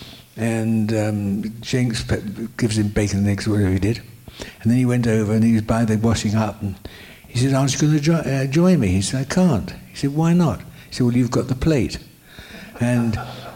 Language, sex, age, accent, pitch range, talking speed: English, male, 60-79, British, 100-125 Hz, 215 wpm